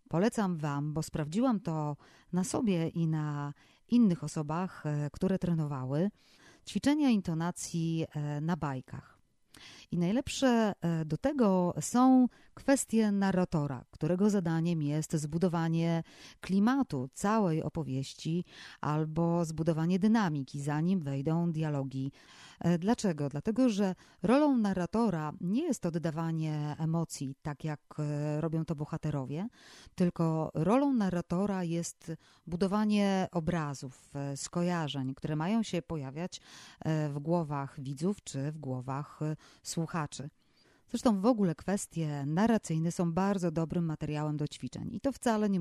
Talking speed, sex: 110 wpm, female